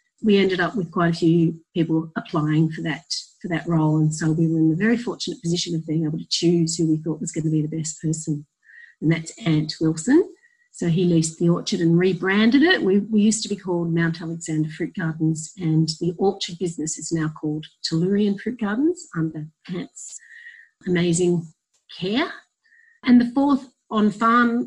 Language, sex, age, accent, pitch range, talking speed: English, female, 40-59, Australian, 165-215 Hz, 190 wpm